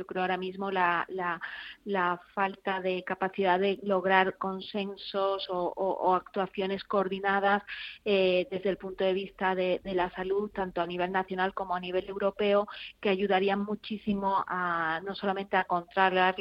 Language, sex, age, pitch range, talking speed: Spanish, female, 30-49, 180-195 Hz, 160 wpm